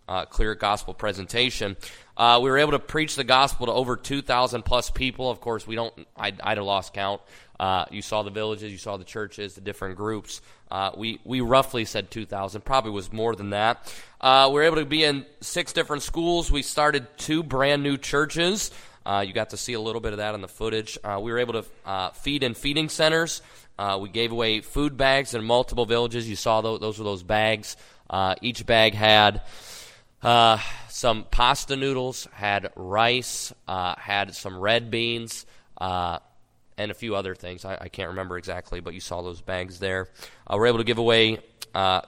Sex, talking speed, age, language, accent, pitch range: male, 205 wpm, 30-49, English, American, 100-125 Hz